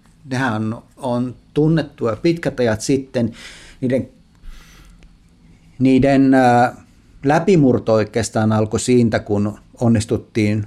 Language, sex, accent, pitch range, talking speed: Finnish, male, native, 105-130 Hz, 85 wpm